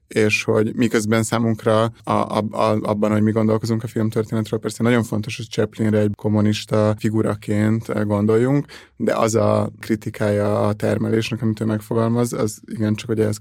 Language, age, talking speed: Hungarian, 30-49, 155 wpm